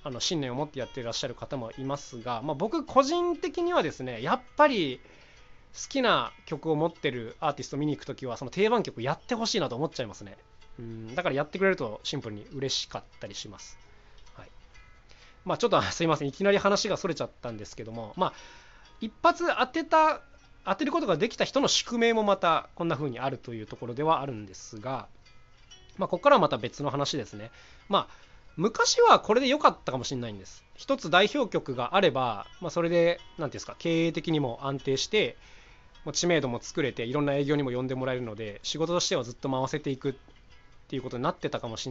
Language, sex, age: Japanese, male, 20-39